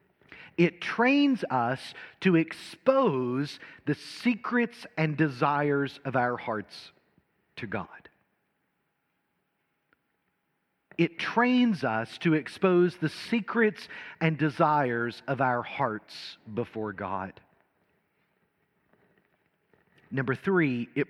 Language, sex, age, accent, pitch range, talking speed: English, male, 50-69, American, 115-155 Hz, 90 wpm